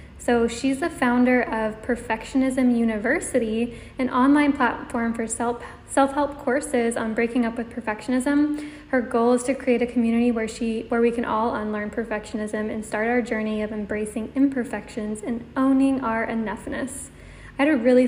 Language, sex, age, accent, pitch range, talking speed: English, female, 10-29, American, 225-260 Hz, 155 wpm